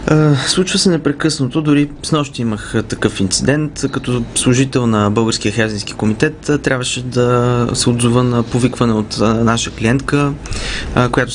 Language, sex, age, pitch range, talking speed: Bulgarian, male, 20-39, 110-130 Hz, 125 wpm